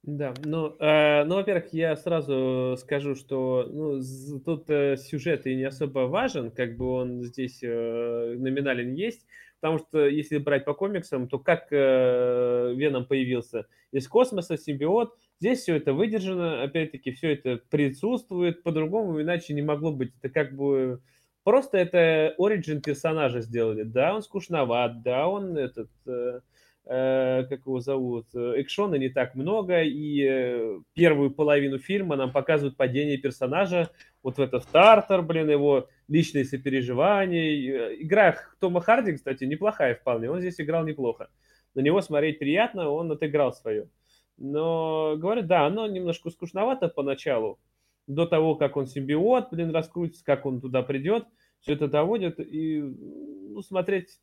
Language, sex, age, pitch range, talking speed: Russian, male, 20-39, 130-170 Hz, 145 wpm